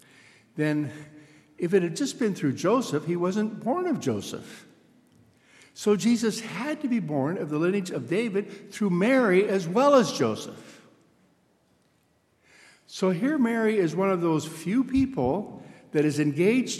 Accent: American